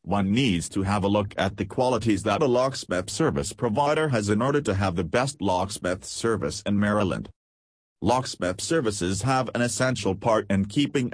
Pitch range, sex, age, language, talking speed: 95-115 Hz, male, 40-59, English, 180 wpm